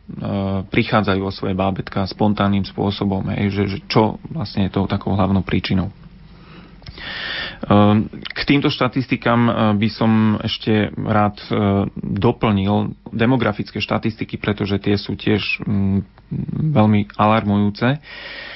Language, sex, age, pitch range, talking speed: Slovak, male, 30-49, 100-115 Hz, 105 wpm